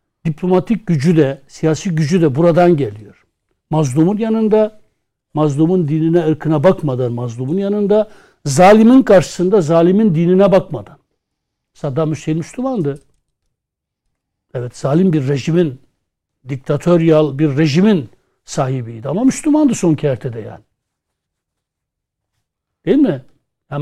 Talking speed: 100 wpm